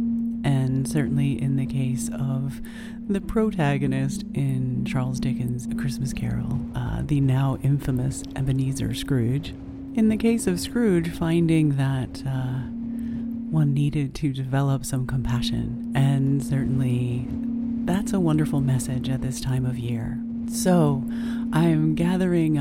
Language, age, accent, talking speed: English, 30-49, American, 125 wpm